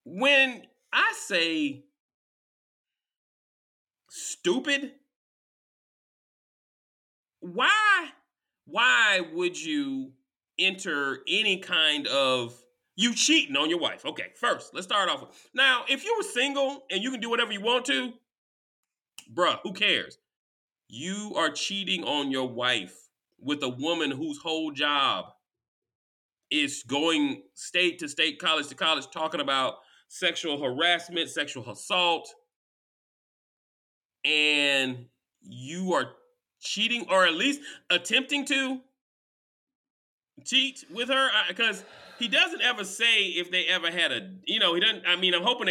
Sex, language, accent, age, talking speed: male, English, American, 40-59, 125 wpm